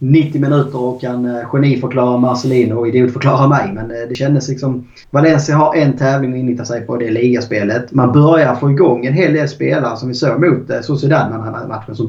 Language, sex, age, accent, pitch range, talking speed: Swedish, male, 30-49, Norwegian, 120-145 Hz, 220 wpm